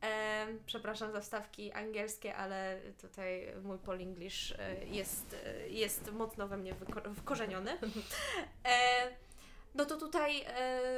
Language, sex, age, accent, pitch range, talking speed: Polish, female, 20-39, native, 200-245 Hz, 95 wpm